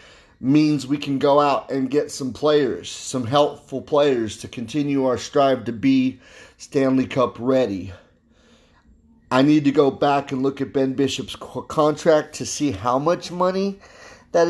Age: 30-49